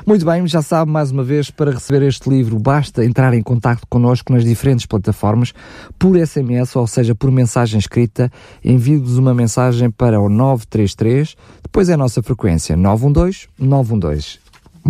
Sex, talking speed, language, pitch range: male, 155 wpm, Portuguese, 115-140 Hz